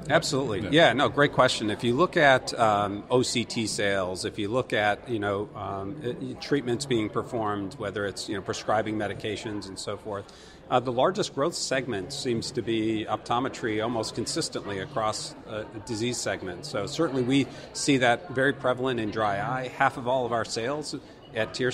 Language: English